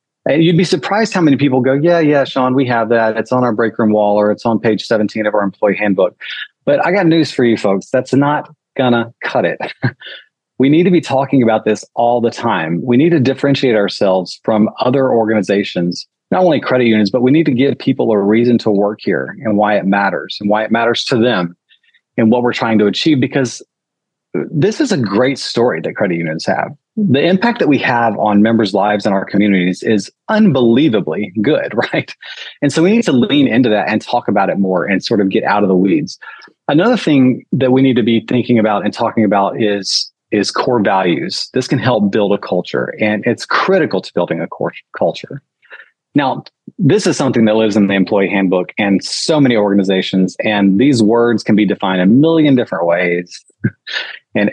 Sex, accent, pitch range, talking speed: male, American, 105-135 Hz, 210 wpm